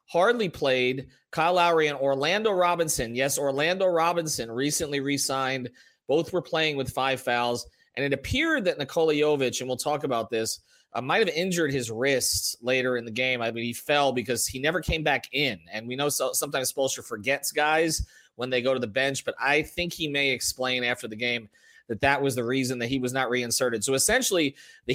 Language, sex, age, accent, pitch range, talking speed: English, male, 30-49, American, 130-195 Hz, 205 wpm